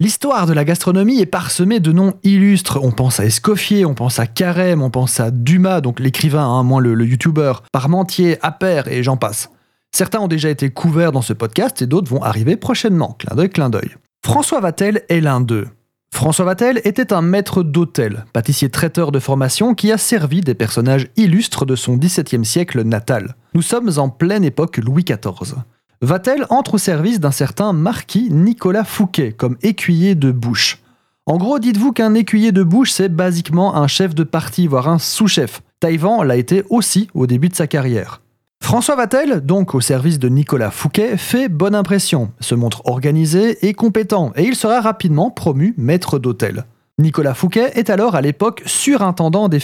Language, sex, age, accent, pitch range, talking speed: French, male, 30-49, French, 130-195 Hz, 185 wpm